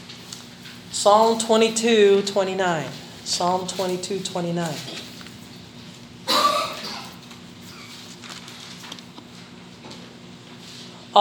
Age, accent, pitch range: 40-59, American, 195-265 Hz